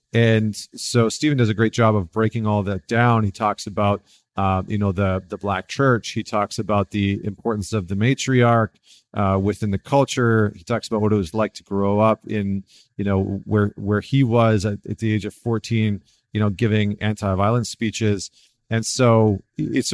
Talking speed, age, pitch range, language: 200 wpm, 30-49, 100-115 Hz, English